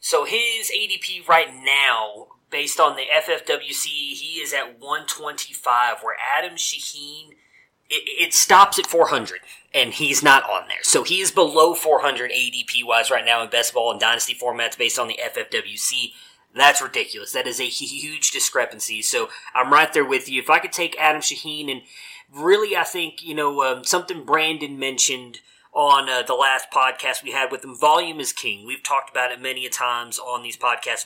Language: English